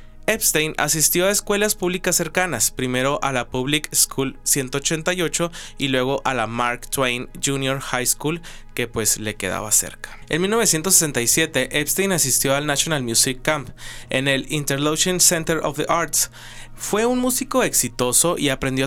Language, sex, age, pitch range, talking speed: Spanish, male, 20-39, 125-170 Hz, 150 wpm